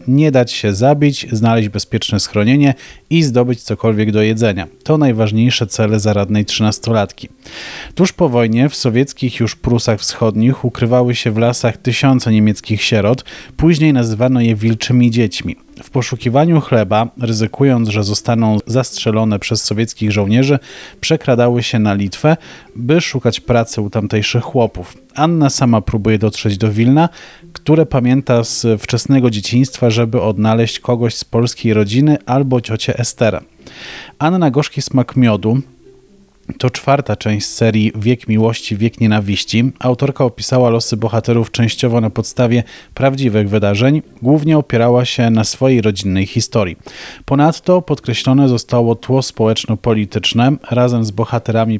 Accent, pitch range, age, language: native, 110-130 Hz, 30-49, Polish